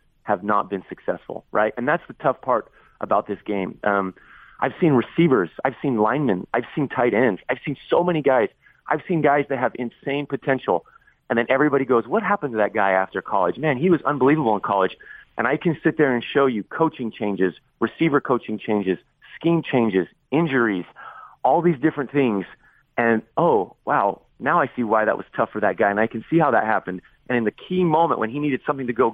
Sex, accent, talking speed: male, American, 215 wpm